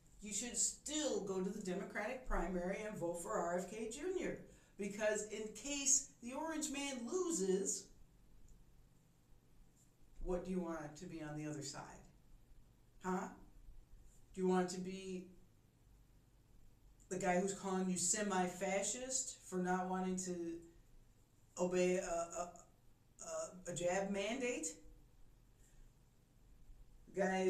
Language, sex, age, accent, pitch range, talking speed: English, female, 40-59, American, 180-225 Hz, 115 wpm